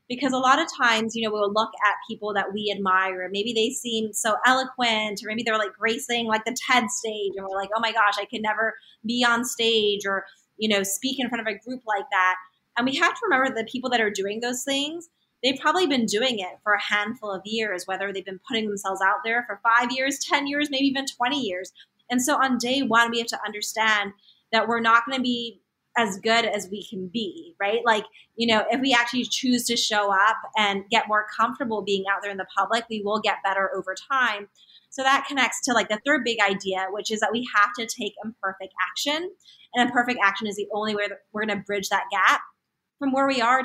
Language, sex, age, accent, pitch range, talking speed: English, female, 20-39, American, 205-245 Hz, 240 wpm